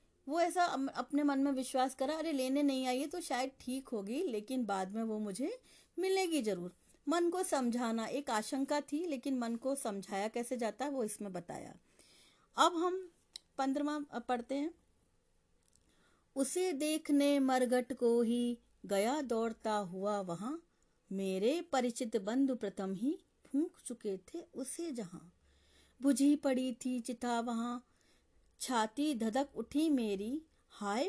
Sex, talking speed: female, 85 wpm